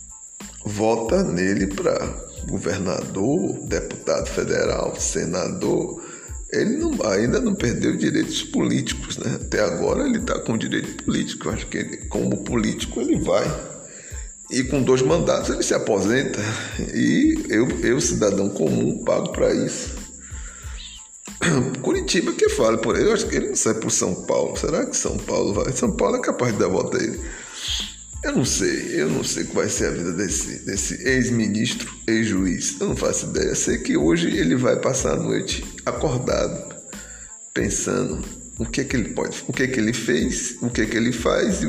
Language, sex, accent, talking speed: Portuguese, male, Brazilian, 175 wpm